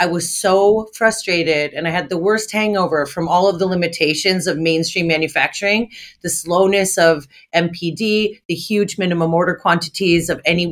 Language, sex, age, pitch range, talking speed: English, female, 30-49, 170-205 Hz, 160 wpm